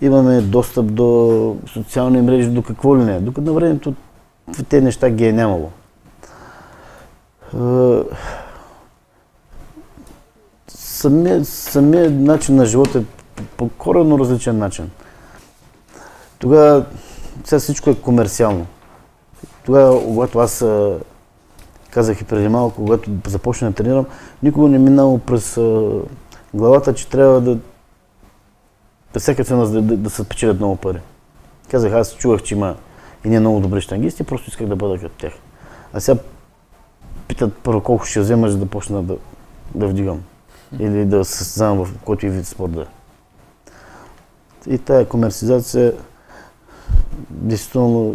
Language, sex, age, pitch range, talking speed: Bulgarian, male, 30-49, 105-125 Hz, 125 wpm